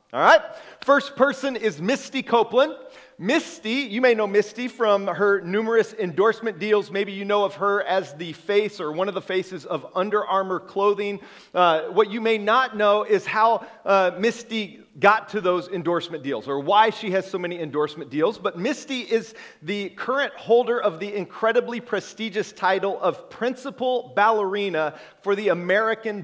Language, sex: English, male